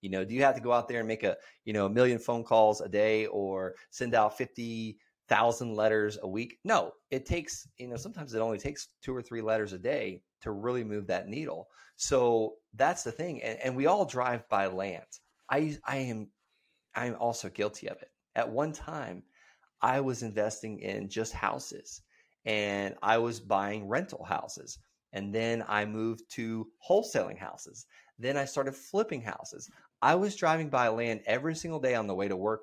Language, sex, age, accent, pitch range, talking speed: English, male, 30-49, American, 105-130 Hz, 195 wpm